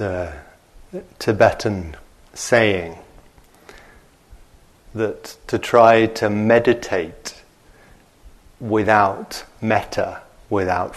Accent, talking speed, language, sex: British, 60 wpm, English, male